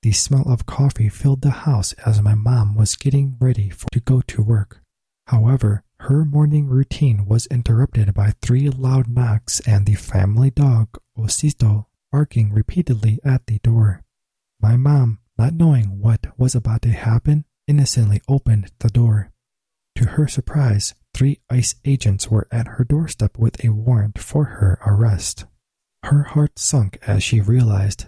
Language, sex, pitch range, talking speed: English, male, 105-130 Hz, 155 wpm